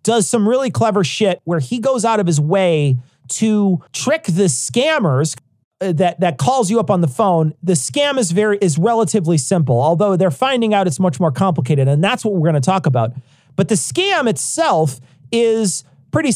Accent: American